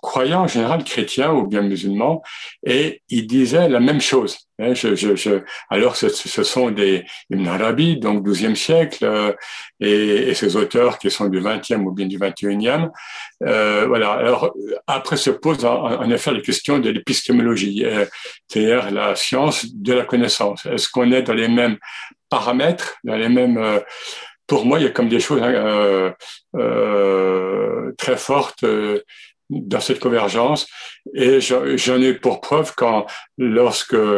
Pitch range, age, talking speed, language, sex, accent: 100-125 Hz, 60-79, 165 wpm, French, male, French